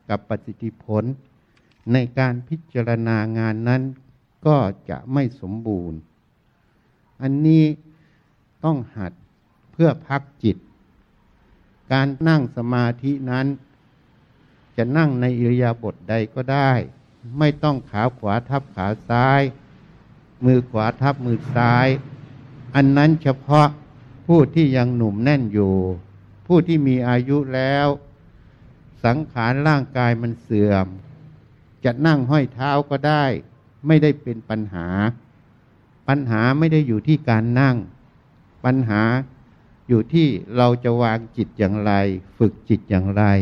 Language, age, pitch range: Thai, 60-79, 110-140 Hz